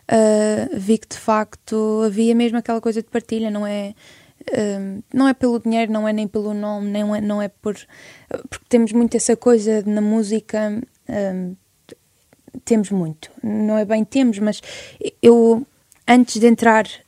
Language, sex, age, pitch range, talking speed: Portuguese, female, 20-39, 215-235 Hz, 170 wpm